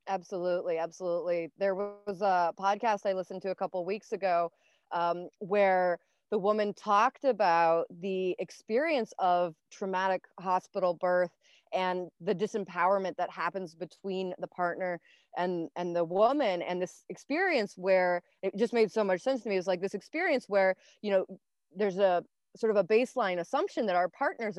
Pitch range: 175-200 Hz